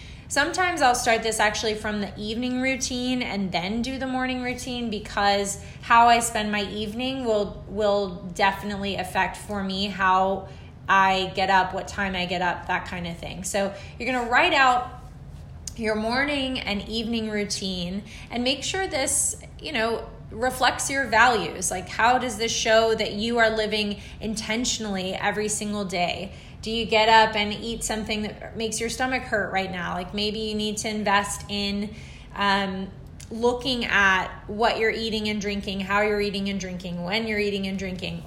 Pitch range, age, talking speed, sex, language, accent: 200-235 Hz, 20-39, 175 wpm, female, English, American